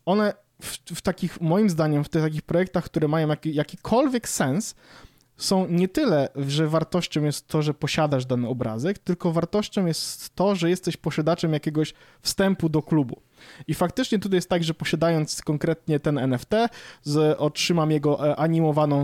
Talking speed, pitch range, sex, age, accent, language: 155 wpm, 145-175 Hz, male, 20-39, native, Polish